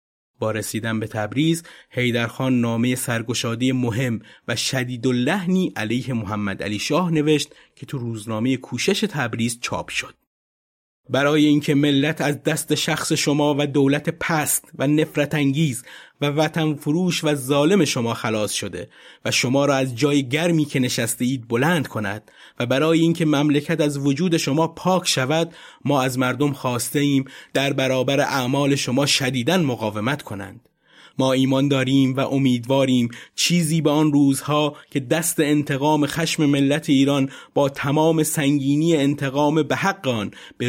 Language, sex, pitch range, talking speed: Persian, male, 120-150 Hz, 145 wpm